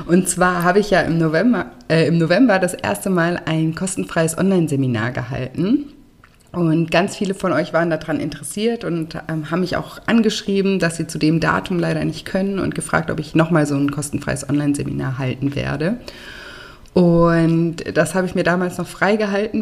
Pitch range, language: 160-200 Hz, German